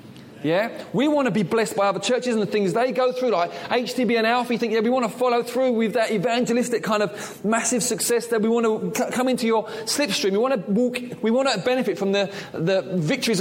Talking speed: 240 wpm